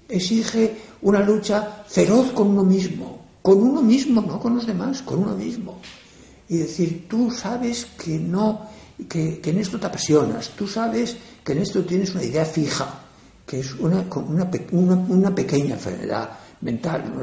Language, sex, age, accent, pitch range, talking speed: Spanish, male, 60-79, Spanish, 150-215 Hz, 170 wpm